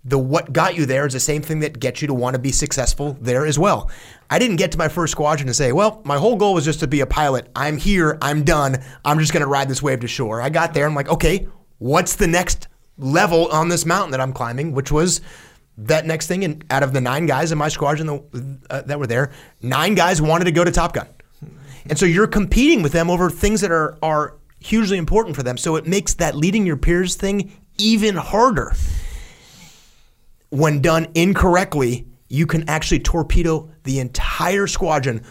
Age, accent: 30-49, American